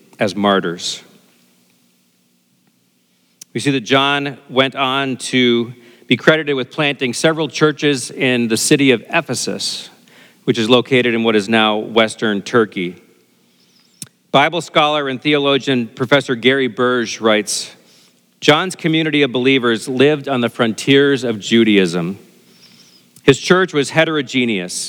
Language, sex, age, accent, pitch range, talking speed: English, male, 40-59, American, 110-140 Hz, 125 wpm